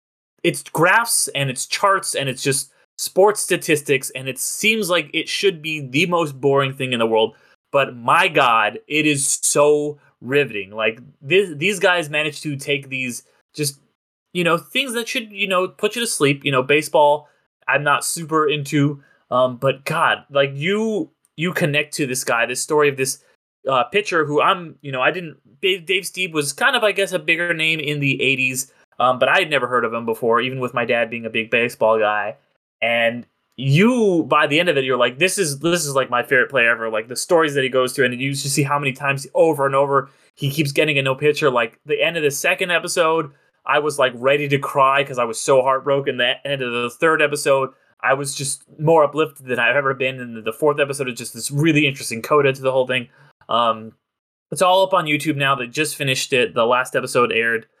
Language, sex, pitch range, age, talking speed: English, male, 130-160 Hz, 20-39, 220 wpm